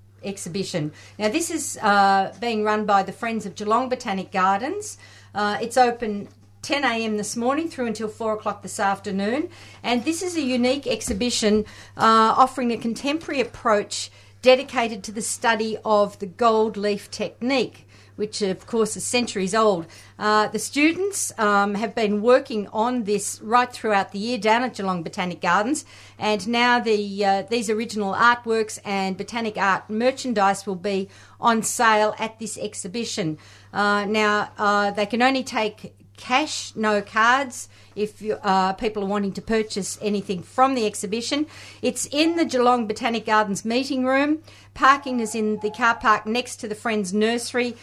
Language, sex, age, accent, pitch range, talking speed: English, female, 50-69, Australian, 200-245 Hz, 160 wpm